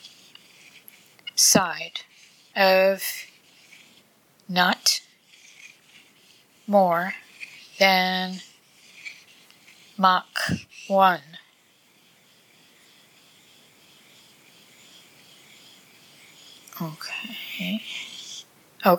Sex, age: female, 20-39